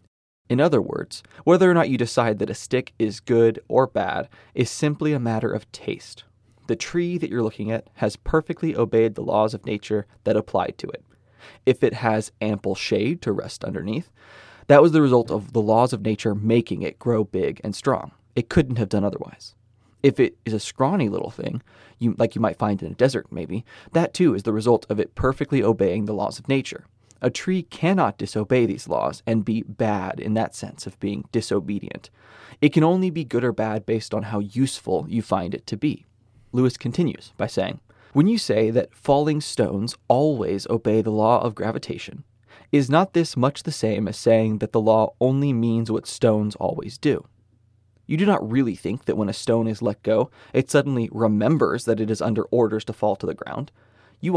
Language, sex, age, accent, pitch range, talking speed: English, male, 20-39, American, 110-130 Hz, 205 wpm